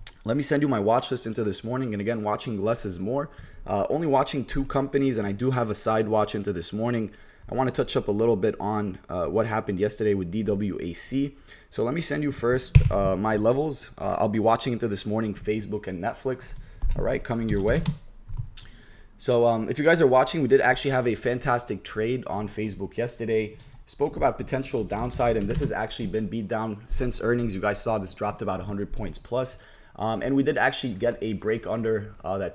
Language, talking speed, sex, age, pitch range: English, 220 wpm, male, 20-39, 105-125 Hz